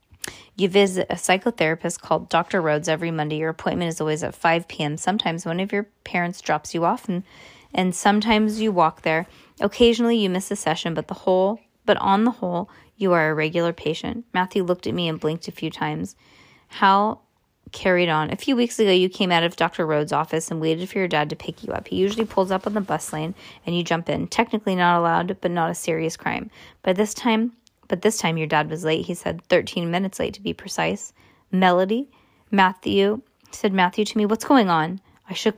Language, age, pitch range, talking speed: English, 20-39, 165-210 Hz, 215 wpm